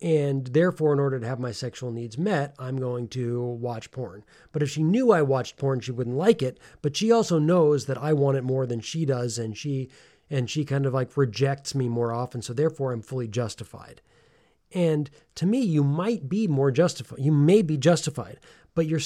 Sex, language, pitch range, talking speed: male, English, 130-160 Hz, 215 wpm